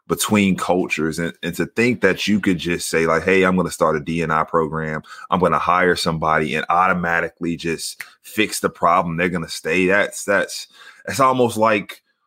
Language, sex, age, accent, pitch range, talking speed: English, male, 30-49, American, 85-100 Hz, 195 wpm